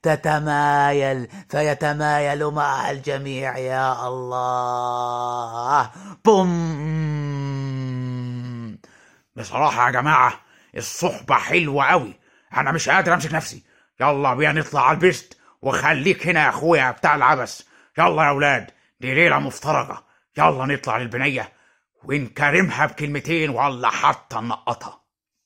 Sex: male